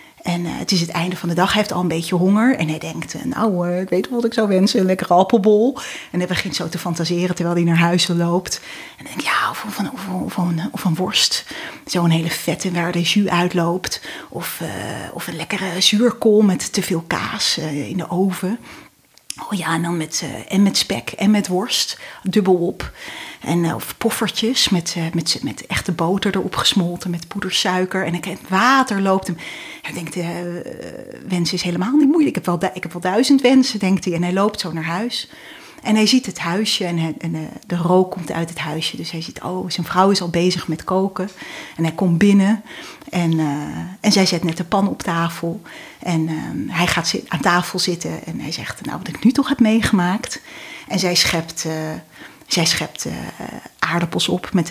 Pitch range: 170-205 Hz